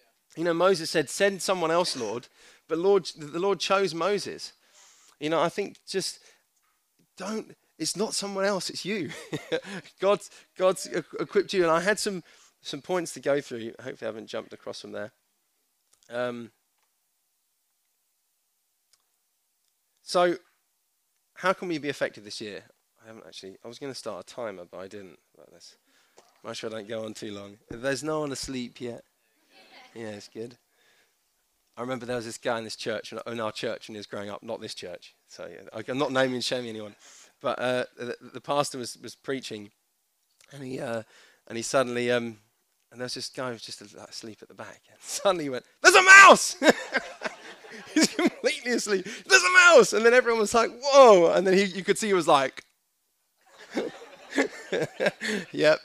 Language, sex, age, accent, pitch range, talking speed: English, male, 20-39, British, 120-190 Hz, 185 wpm